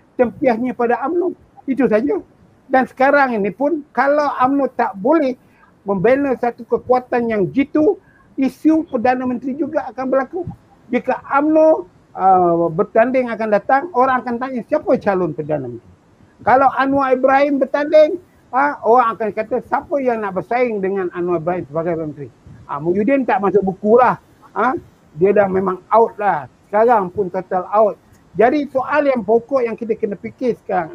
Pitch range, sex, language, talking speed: 210-275 Hz, male, Malay, 155 wpm